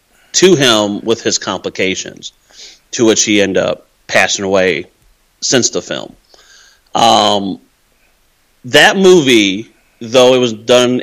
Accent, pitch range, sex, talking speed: American, 105-130 Hz, male, 120 wpm